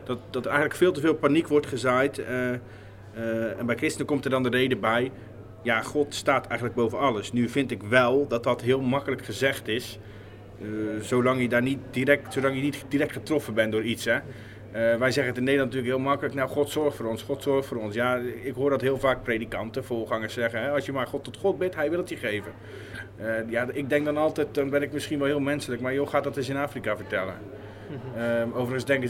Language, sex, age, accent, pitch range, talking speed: Dutch, male, 30-49, Dutch, 115-145 Hz, 225 wpm